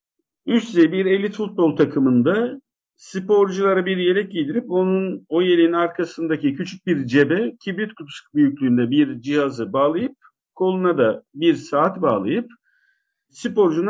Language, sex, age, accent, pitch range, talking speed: Turkish, male, 50-69, native, 160-225 Hz, 120 wpm